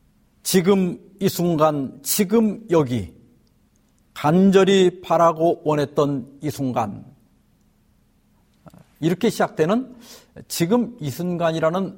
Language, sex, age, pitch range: Korean, male, 50-69, 160-210 Hz